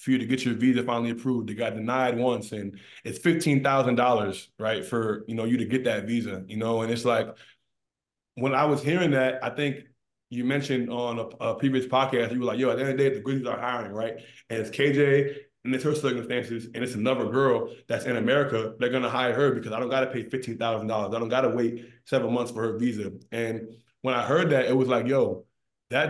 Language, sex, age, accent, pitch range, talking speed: English, male, 20-39, American, 115-130 Hz, 230 wpm